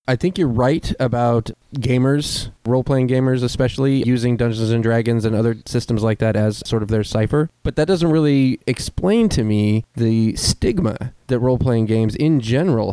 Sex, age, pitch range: male, 20-39, 105-125 Hz